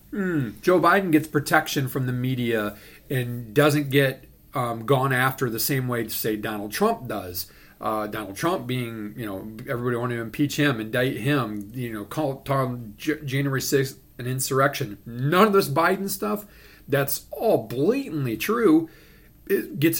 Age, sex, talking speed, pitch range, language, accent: 40-59, male, 155 wpm, 125-160 Hz, English, American